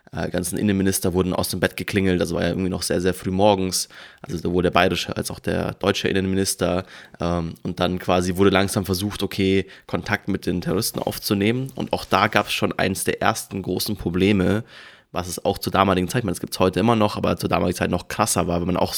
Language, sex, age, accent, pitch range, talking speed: German, male, 20-39, German, 90-105 Hz, 230 wpm